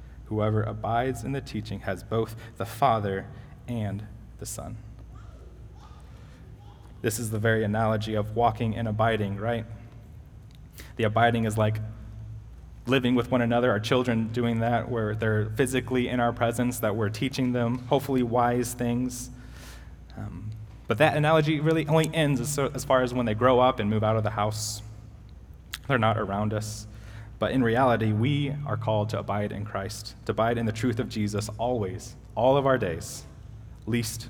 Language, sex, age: English, male, 20-39